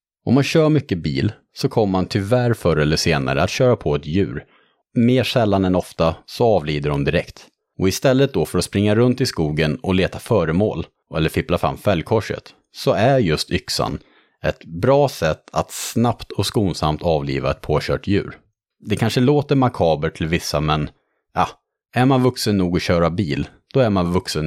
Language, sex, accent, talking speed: Swedish, male, Norwegian, 185 wpm